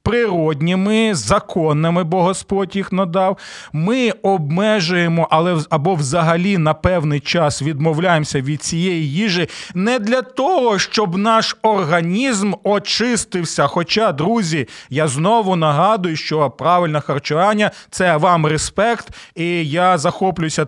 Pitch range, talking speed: 155-205 Hz, 115 wpm